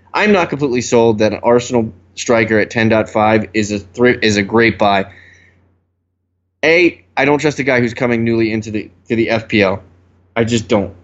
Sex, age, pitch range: male, 20-39, 100-120 Hz